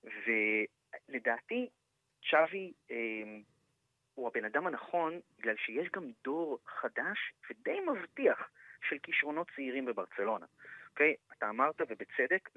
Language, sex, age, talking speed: Hebrew, male, 30-49, 105 wpm